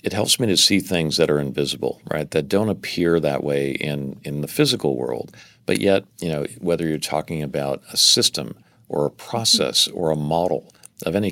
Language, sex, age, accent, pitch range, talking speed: English, male, 50-69, American, 70-90 Hz, 200 wpm